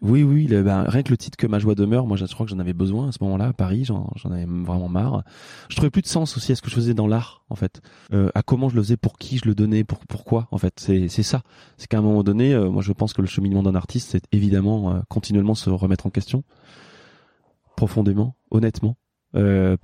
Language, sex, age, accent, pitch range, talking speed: French, male, 20-39, French, 95-120 Hz, 265 wpm